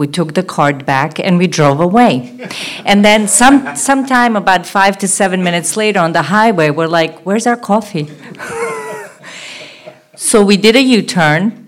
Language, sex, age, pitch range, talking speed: English, female, 40-59, 145-220 Hz, 165 wpm